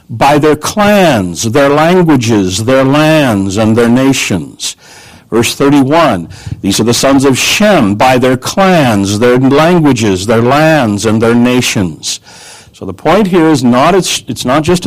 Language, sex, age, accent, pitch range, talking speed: English, male, 60-79, American, 105-145 Hz, 150 wpm